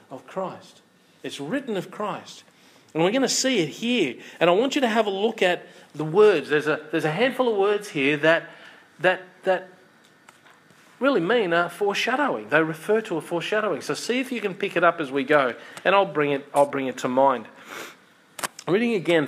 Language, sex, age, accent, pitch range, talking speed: English, male, 40-59, Australian, 140-190 Hz, 205 wpm